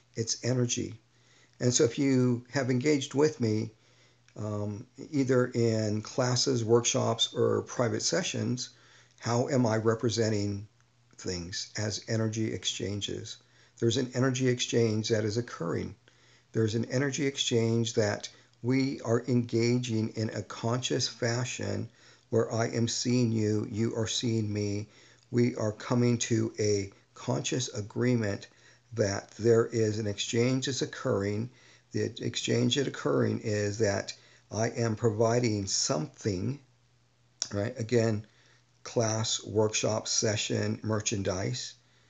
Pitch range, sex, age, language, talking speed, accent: 110-125 Hz, male, 50-69, English, 120 wpm, American